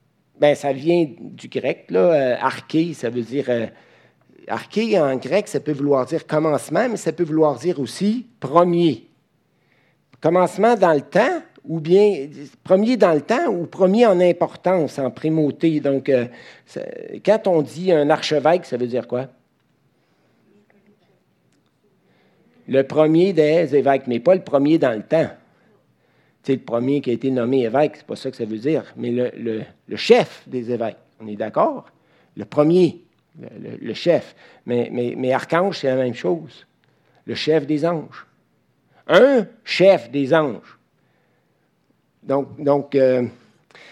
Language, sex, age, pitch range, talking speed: French, male, 60-79, 135-180 Hz, 155 wpm